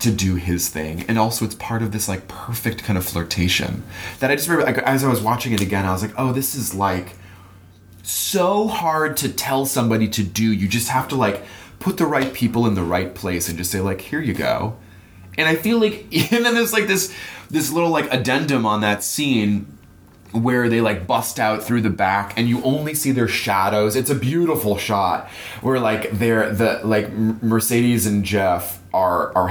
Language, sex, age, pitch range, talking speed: English, male, 20-39, 95-120 Hz, 210 wpm